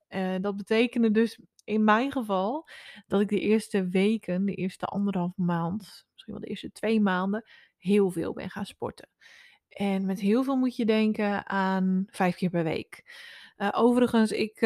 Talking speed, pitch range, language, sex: 170 wpm, 190-225 Hz, Dutch, female